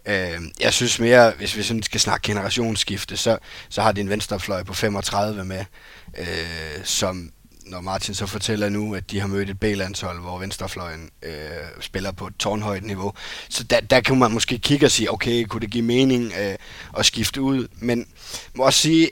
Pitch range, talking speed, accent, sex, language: 100-115 Hz, 195 wpm, native, male, Danish